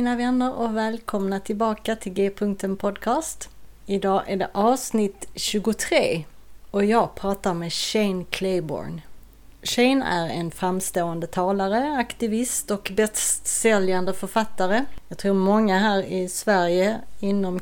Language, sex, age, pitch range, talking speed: Swedish, female, 30-49, 175-210 Hz, 125 wpm